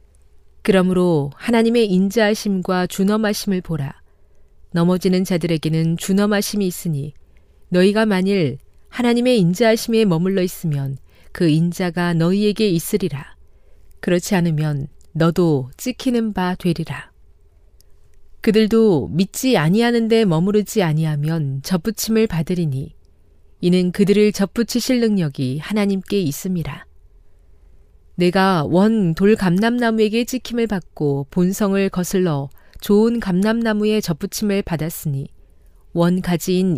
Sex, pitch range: female, 140-205 Hz